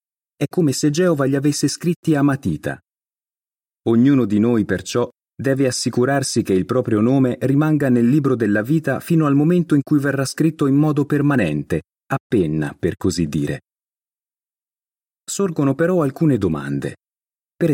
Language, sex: Italian, male